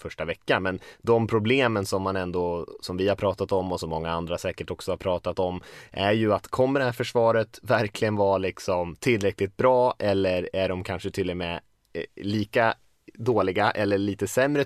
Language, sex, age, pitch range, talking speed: Swedish, male, 20-39, 85-110 Hz, 190 wpm